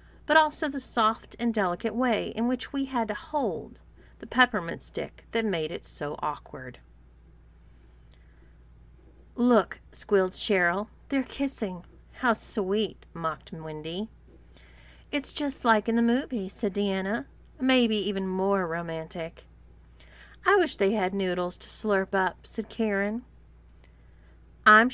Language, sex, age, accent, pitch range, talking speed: English, female, 40-59, American, 150-225 Hz, 130 wpm